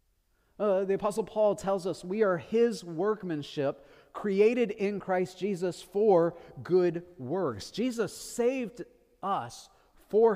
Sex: male